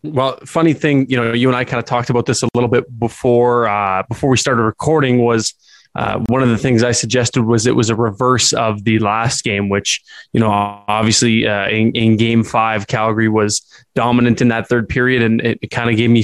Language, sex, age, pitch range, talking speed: English, male, 20-39, 115-130 Hz, 230 wpm